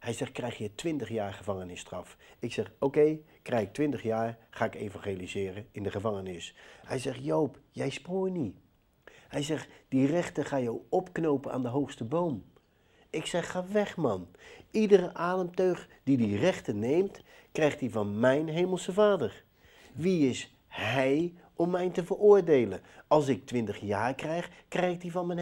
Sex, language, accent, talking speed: male, Dutch, Dutch, 170 wpm